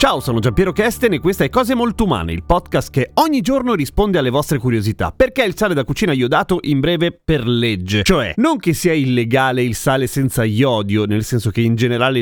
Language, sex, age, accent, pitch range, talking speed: Italian, male, 30-49, native, 130-195 Hz, 215 wpm